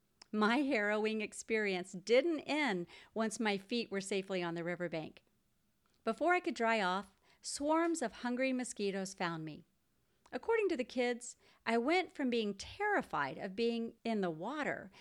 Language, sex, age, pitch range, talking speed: English, female, 40-59, 195-270 Hz, 150 wpm